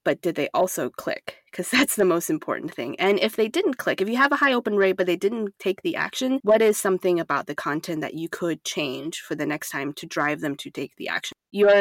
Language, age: English, 20-39